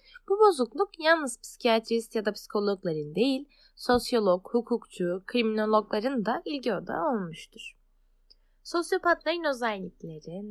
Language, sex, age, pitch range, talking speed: Turkish, female, 20-39, 200-270 Hz, 90 wpm